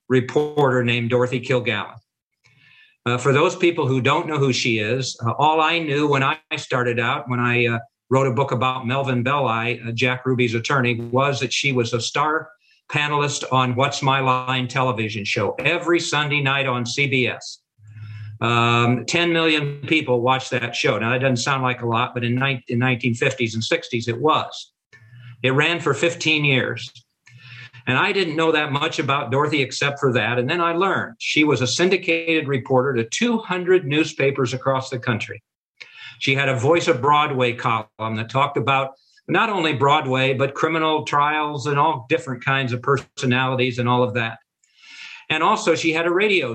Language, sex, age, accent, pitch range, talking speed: English, male, 50-69, American, 125-150 Hz, 180 wpm